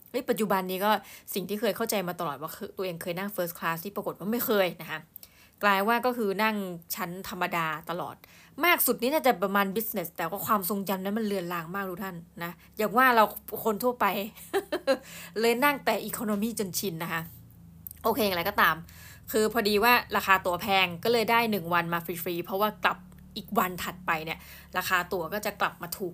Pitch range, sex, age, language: 175-220 Hz, female, 20-39, Thai